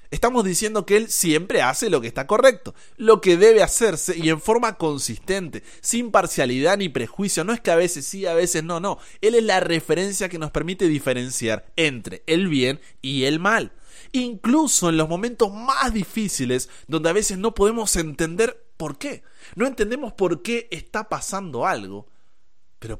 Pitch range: 115-175 Hz